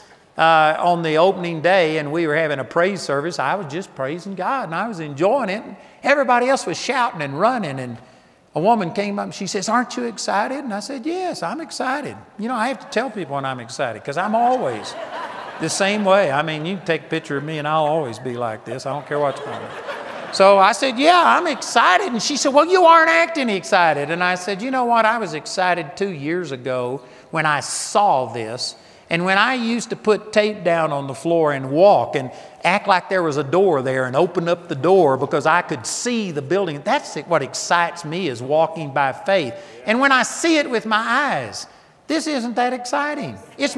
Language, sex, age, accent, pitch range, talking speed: English, male, 50-69, American, 160-245 Hz, 230 wpm